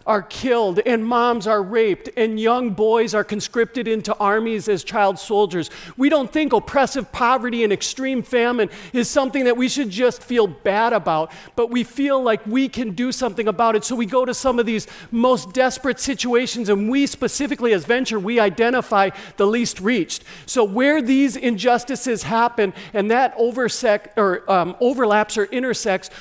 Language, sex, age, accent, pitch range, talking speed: English, male, 50-69, American, 205-245 Hz, 175 wpm